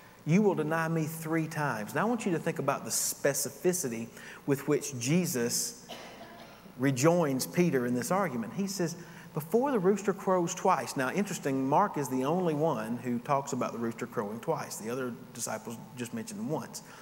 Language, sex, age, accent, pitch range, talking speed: English, male, 40-59, American, 125-180 Hz, 175 wpm